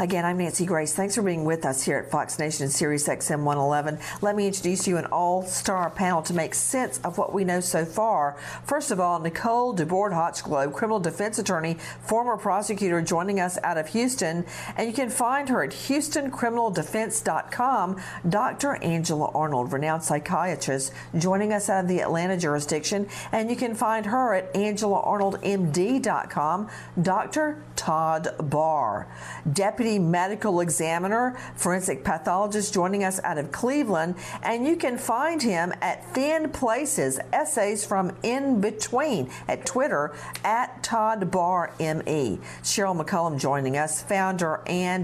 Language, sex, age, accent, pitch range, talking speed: English, female, 50-69, American, 165-220 Hz, 150 wpm